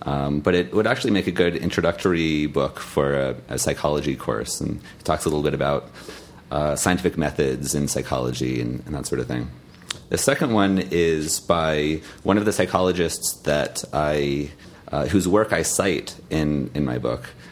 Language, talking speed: English, 180 wpm